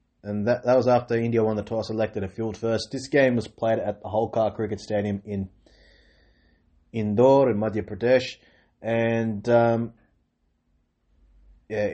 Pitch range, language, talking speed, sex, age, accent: 100-115 Hz, English, 150 wpm, male, 20-39, Australian